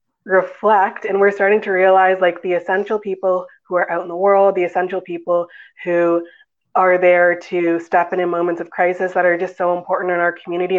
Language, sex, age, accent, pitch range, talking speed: English, female, 20-39, American, 175-195 Hz, 205 wpm